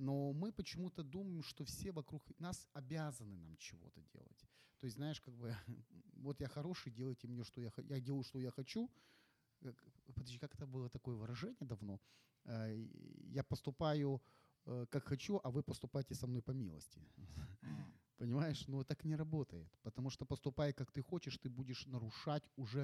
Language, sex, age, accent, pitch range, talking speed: Ukrainian, male, 30-49, native, 125-155 Hz, 165 wpm